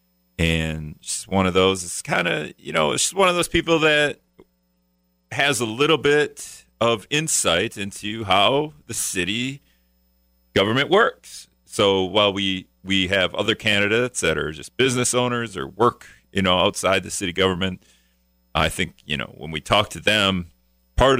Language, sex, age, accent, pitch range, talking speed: English, male, 40-59, American, 75-120 Hz, 160 wpm